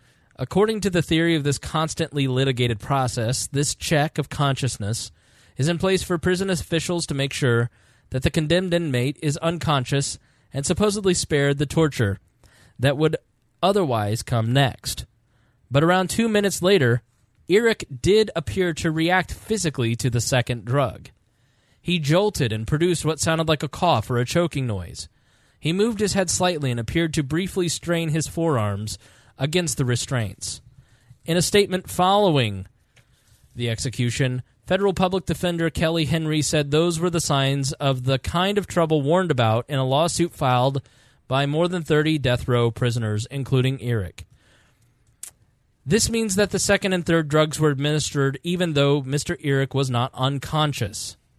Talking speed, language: 155 wpm, English